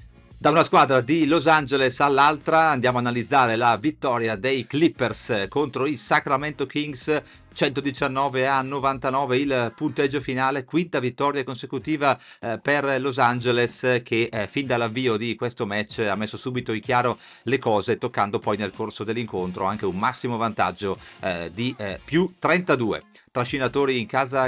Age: 40-59